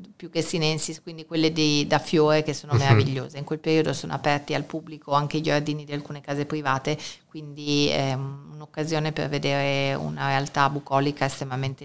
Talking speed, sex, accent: 170 wpm, female, native